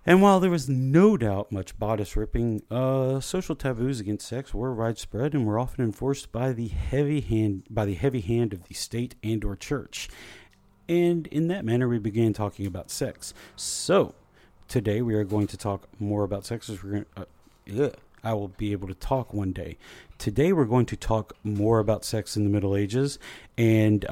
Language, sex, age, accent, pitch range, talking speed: English, male, 40-59, American, 100-125 Hz, 195 wpm